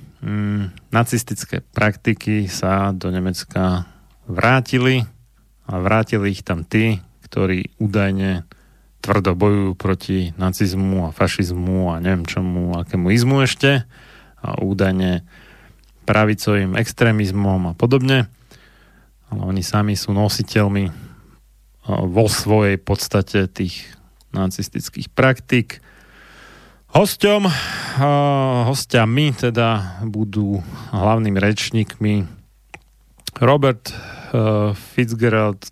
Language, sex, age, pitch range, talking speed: Slovak, male, 30-49, 95-120 Hz, 85 wpm